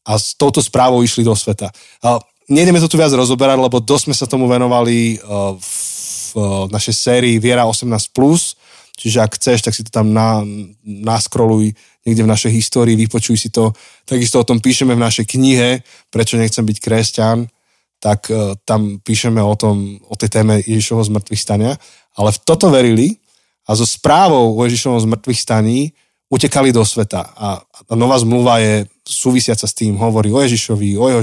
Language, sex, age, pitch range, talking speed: Slovak, male, 20-39, 105-125 Hz, 165 wpm